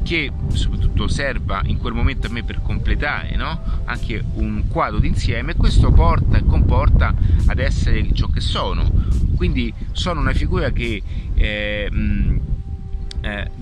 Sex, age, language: male, 30-49, Italian